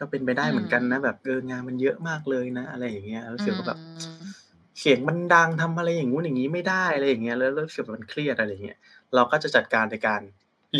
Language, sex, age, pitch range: Thai, male, 20-39, 115-145 Hz